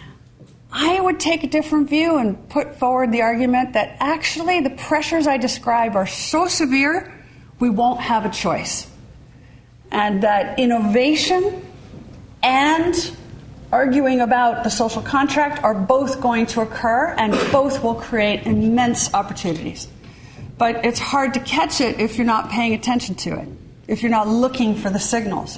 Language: English